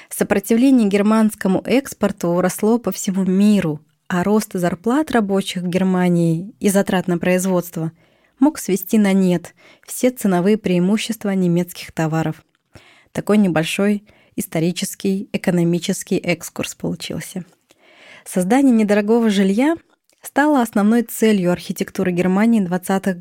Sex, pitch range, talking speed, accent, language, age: female, 175-225 Hz, 105 wpm, native, Russian, 20-39